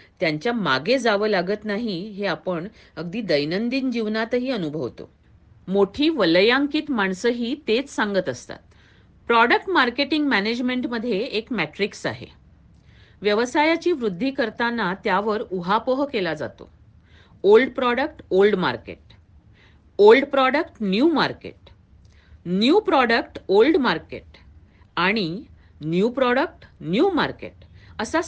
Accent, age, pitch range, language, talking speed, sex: Indian, 40-59, 190-270 Hz, English, 90 wpm, female